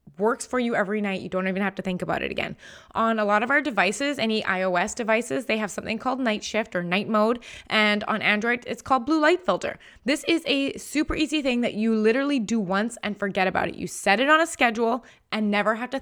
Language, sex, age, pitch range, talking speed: English, female, 20-39, 200-250 Hz, 245 wpm